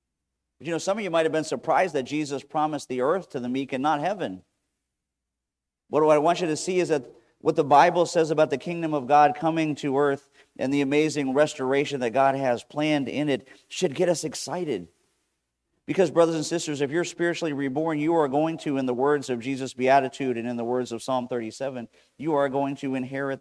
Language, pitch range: English, 125-150 Hz